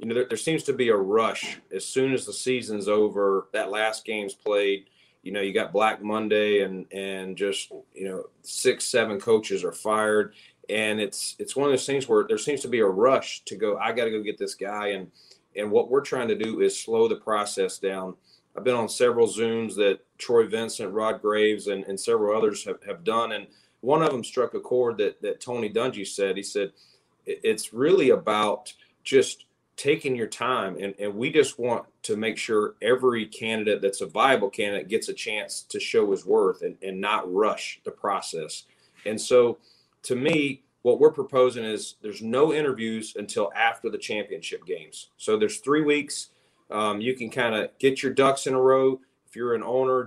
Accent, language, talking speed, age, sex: American, English, 205 wpm, 30-49, male